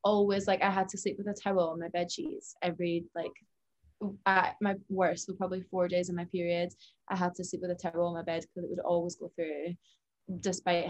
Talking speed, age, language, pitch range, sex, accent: 235 wpm, 20-39, English, 175-205 Hz, female, British